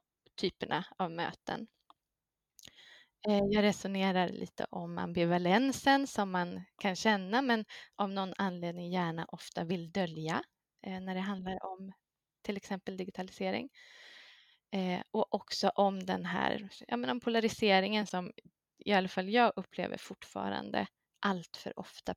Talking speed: 120 wpm